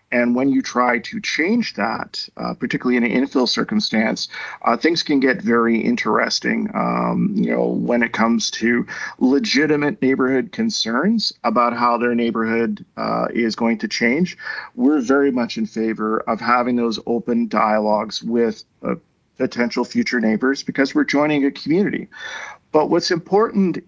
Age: 40-59